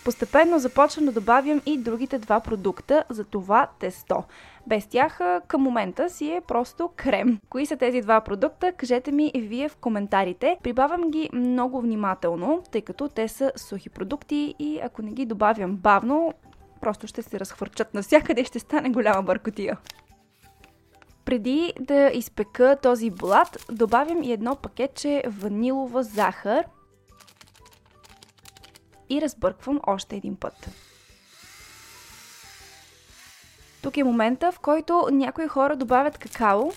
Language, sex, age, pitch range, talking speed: Bulgarian, female, 10-29, 220-295 Hz, 130 wpm